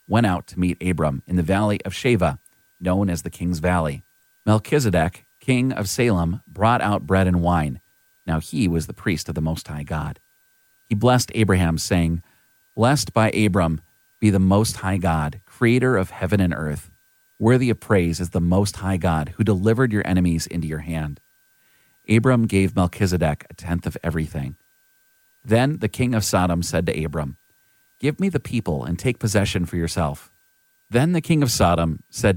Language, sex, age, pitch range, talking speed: English, male, 40-59, 85-120 Hz, 180 wpm